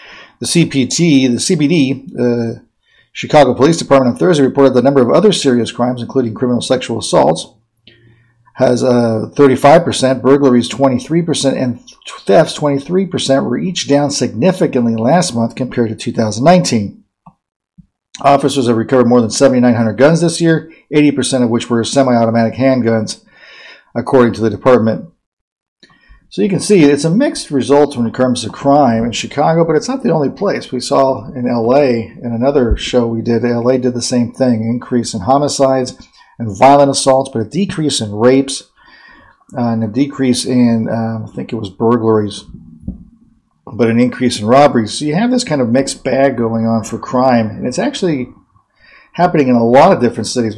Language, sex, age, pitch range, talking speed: English, male, 50-69, 115-140 Hz, 165 wpm